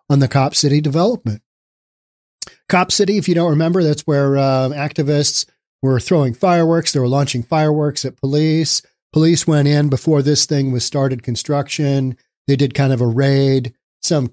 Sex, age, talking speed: male, 40-59, 170 wpm